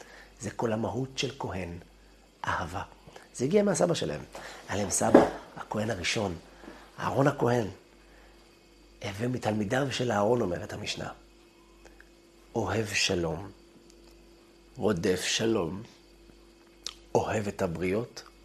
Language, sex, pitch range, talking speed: Hebrew, male, 95-125 Hz, 95 wpm